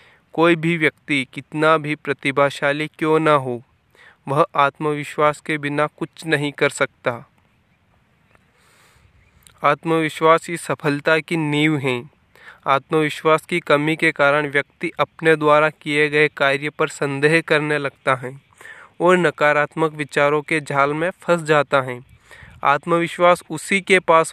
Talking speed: 130 wpm